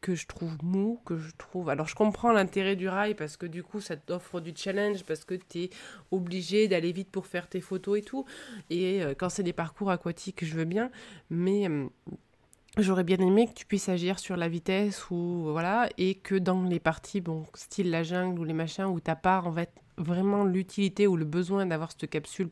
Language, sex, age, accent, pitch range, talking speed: French, female, 20-39, French, 165-195 Hz, 220 wpm